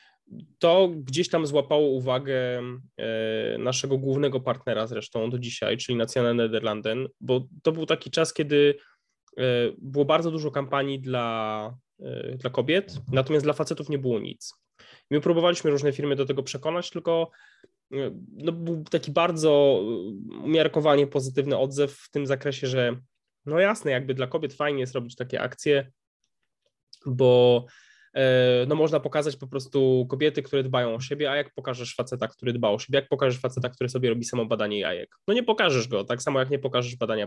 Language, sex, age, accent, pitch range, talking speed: Polish, male, 20-39, native, 125-150 Hz, 160 wpm